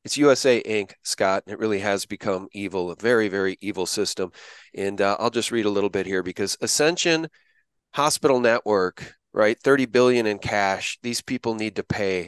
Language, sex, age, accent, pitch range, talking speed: English, male, 40-59, American, 115-150 Hz, 185 wpm